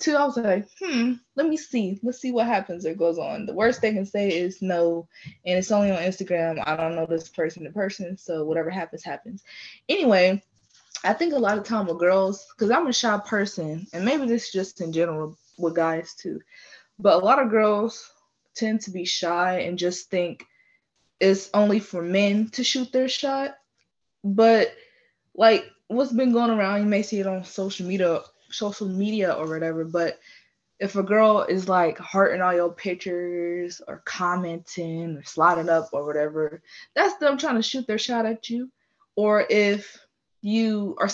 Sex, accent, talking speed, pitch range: female, American, 190 wpm, 175-225 Hz